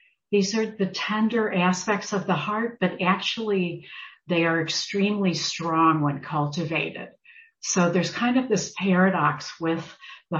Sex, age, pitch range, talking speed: female, 60-79, 155-195 Hz, 140 wpm